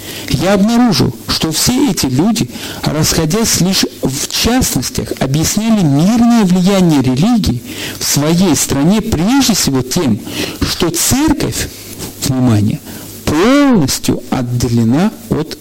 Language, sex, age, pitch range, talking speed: Russian, male, 50-69, 140-210 Hz, 100 wpm